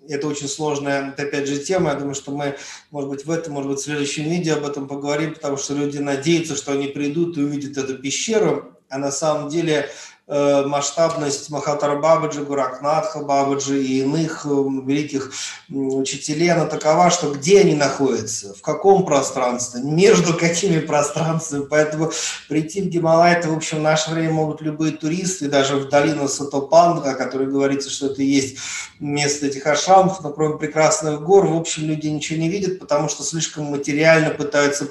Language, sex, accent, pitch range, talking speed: Russian, male, native, 145-165 Hz, 170 wpm